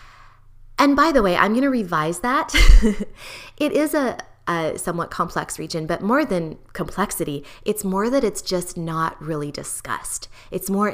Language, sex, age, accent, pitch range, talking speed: English, female, 20-39, American, 165-210 Hz, 165 wpm